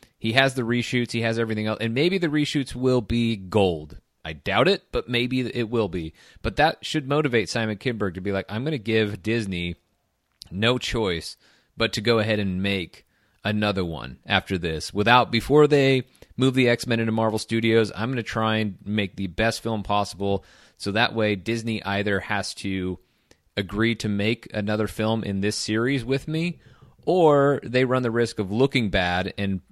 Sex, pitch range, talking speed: male, 95-115 Hz, 190 wpm